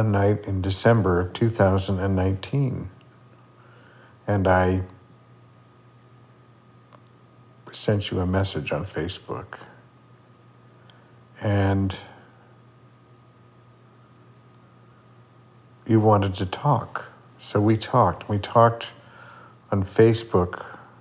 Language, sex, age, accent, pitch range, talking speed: English, male, 50-69, American, 95-125 Hz, 70 wpm